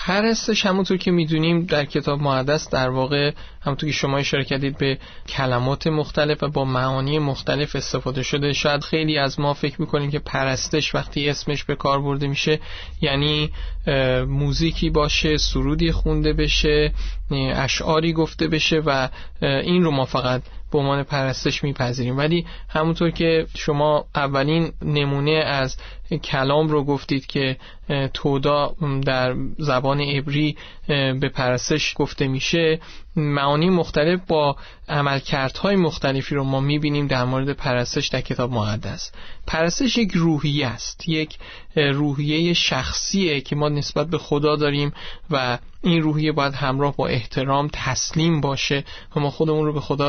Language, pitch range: Persian, 135-155 Hz